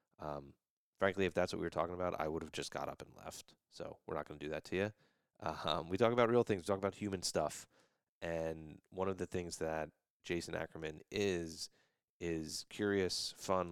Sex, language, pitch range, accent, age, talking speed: male, English, 80-100 Hz, American, 30-49, 220 wpm